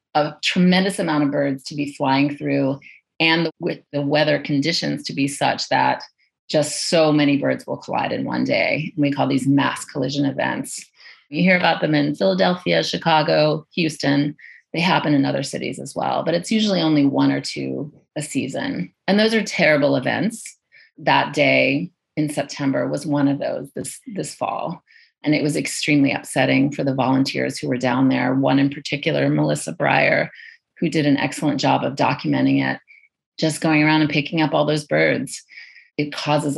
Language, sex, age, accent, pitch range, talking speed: English, female, 30-49, American, 135-160 Hz, 180 wpm